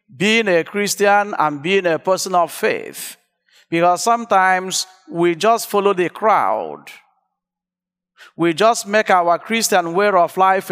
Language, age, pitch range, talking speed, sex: English, 50-69, 165-210 Hz, 135 wpm, male